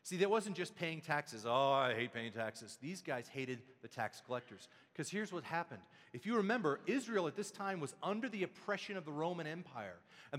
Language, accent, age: English, American, 40-59